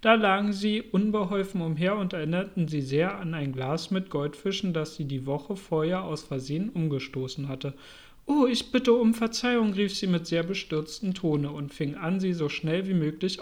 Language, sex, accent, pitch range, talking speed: German, male, German, 160-200 Hz, 190 wpm